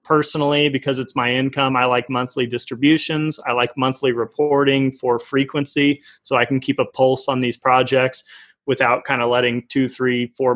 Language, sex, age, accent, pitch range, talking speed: English, male, 30-49, American, 125-150 Hz, 175 wpm